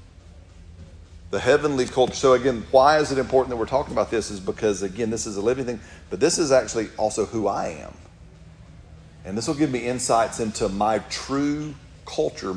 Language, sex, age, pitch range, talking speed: English, male, 40-59, 100-125 Hz, 190 wpm